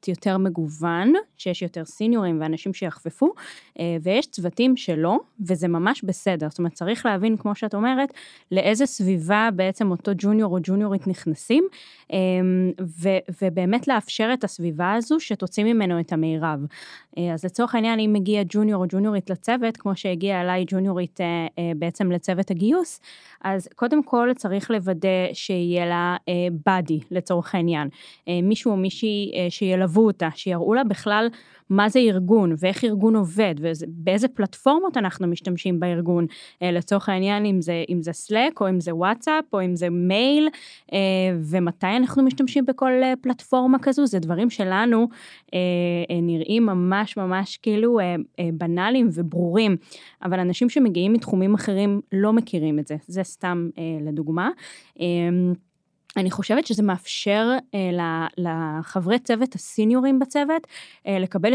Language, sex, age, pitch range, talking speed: Hebrew, female, 10-29, 175-220 Hz, 130 wpm